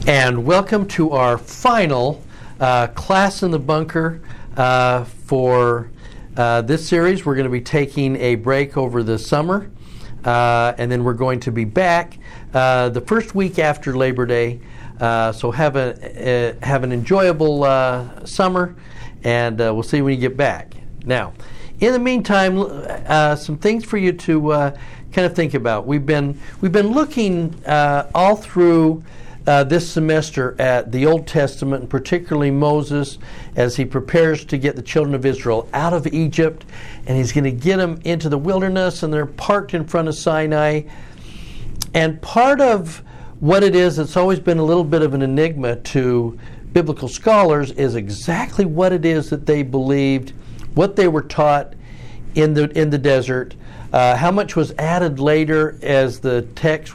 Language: English